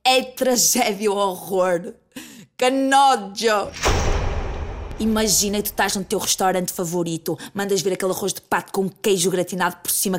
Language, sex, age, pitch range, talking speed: Portuguese, female, 20-39, 200-285 Hz, 140 wpm